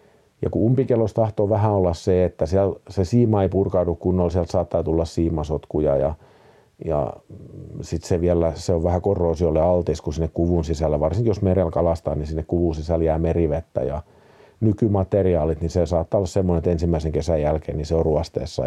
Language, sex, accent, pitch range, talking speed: Finnish, male, native, 80-100 Hz, 185 wpm